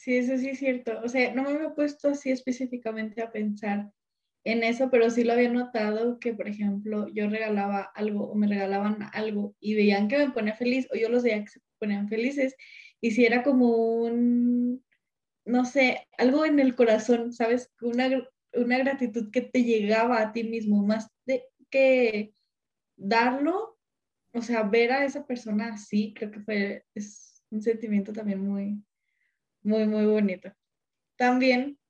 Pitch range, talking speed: 210-255 Hz, 170 wpm